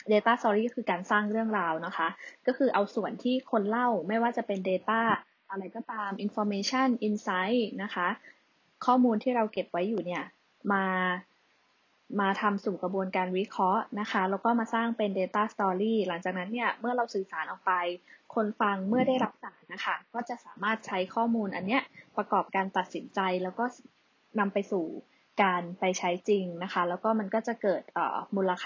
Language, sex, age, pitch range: Thai, female, 20-39, 190-230 Hz